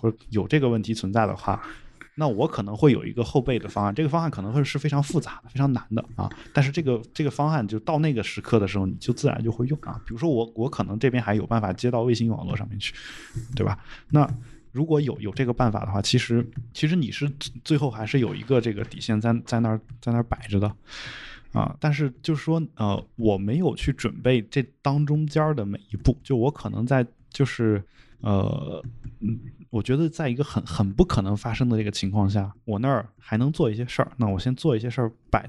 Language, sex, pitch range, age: Chinese, male, 110-140 Hz, 20-39